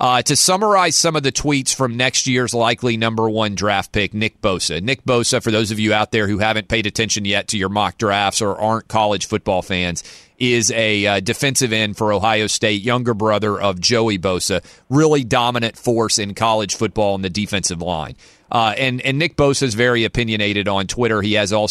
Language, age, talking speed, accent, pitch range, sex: English, 30-49, 205 wpm, American, 110-135 Hz, male